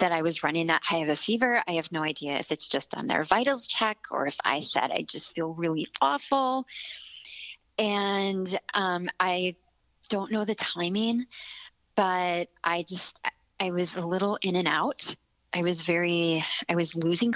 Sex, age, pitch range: female, 30-49, 165-215 Hz